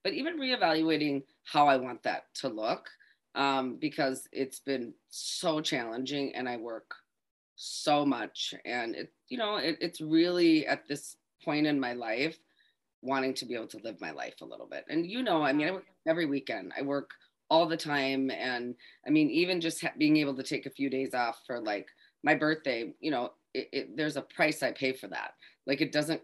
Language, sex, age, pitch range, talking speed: English, female, 30-49, 125-155 Hz, 205 wpm